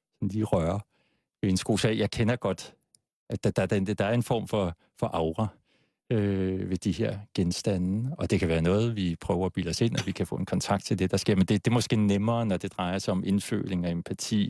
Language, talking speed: Danish, 230 wpm